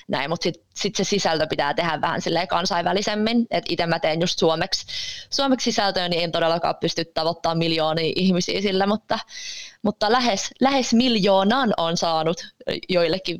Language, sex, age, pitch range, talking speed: Finnish, female, 20-39, 170-210 Hz, 150 wpm